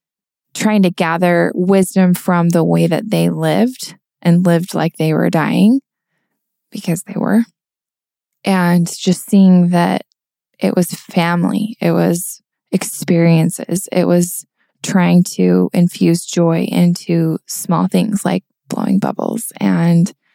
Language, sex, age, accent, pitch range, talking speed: English, female, 20-39, American, 170-195 Hz, 125 wpm